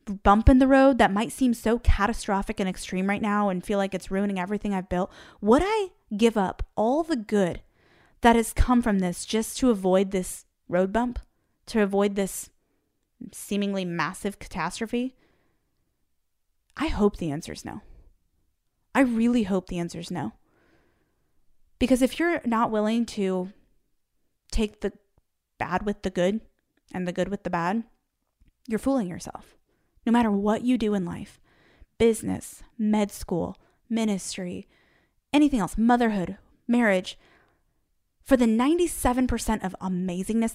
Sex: female